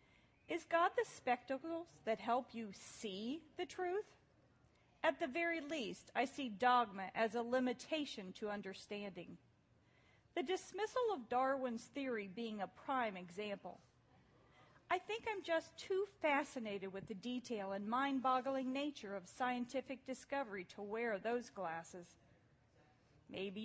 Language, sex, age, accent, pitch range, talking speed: English, female, 40-59, American, 200-280 Hz, 130 wpm